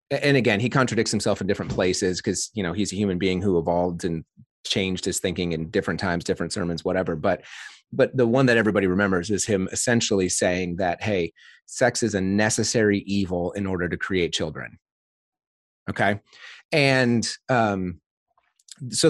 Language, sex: English, male